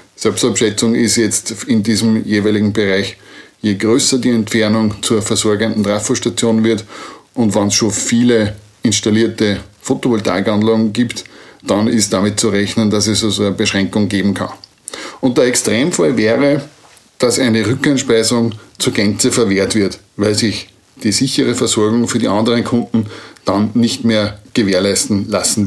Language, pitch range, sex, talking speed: German, 105-120 Hz, male, 140 wpm